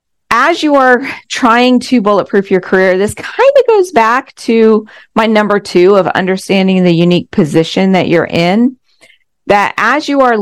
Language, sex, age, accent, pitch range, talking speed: English, female, 40-59, American, 170-220 Hz, 165 wpm